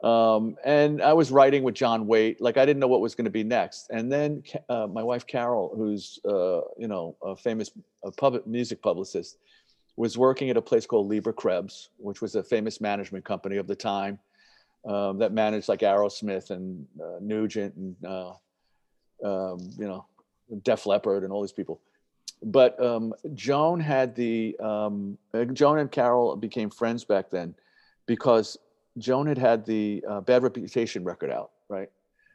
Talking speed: 175 wpm